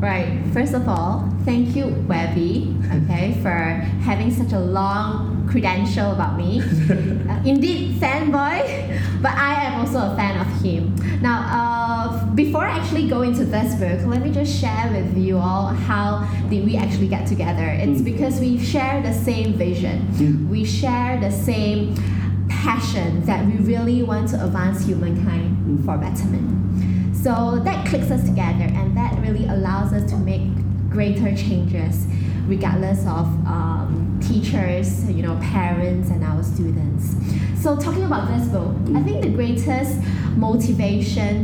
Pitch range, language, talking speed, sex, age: 95-105 Hz, English, 150 wpm, female, 20-39